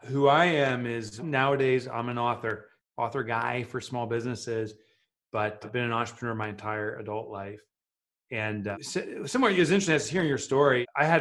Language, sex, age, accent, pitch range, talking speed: English, male, 30-49, American, 110-140 Hz, 175 wpm